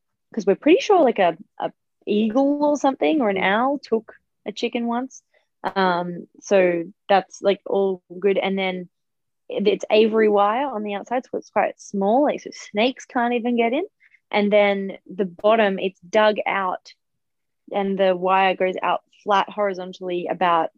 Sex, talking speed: female, 165 wpm